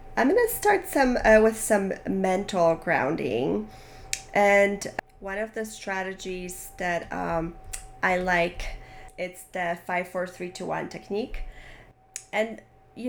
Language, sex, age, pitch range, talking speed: English, female, 30-49, 175-220 Hz, 130 wpm